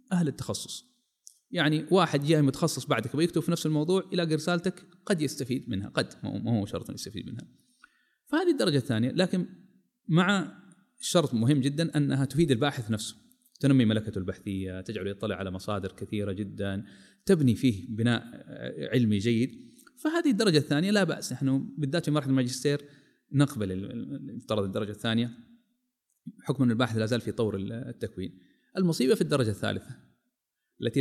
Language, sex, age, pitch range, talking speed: Arabic, male, 30-49, 120-185 Hz, 145 wpm